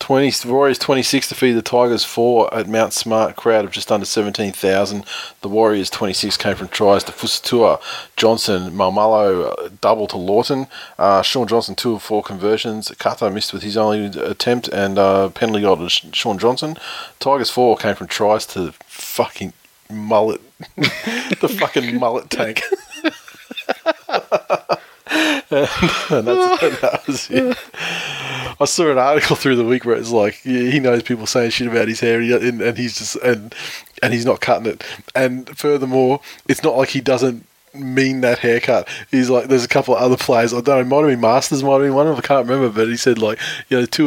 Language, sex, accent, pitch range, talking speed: English, male, Australian, 110-135 Hz, 190 wpm